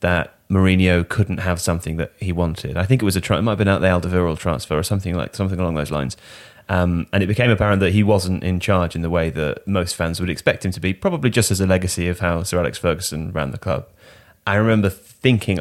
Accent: British